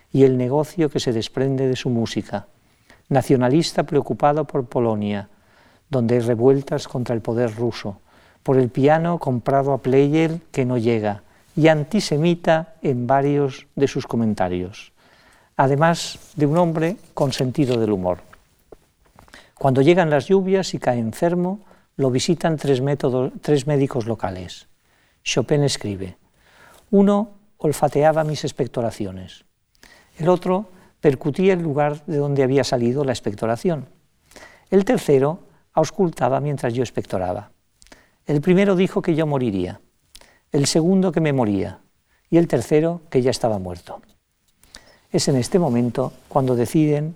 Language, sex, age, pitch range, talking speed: Spanish, male, 50-69, 125-160 Hz, 135 wpm